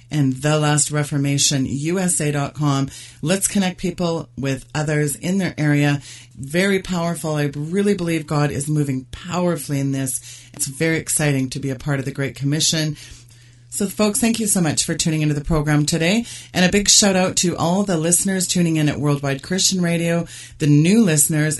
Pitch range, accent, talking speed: 135-170 Hz, American, 180 wpm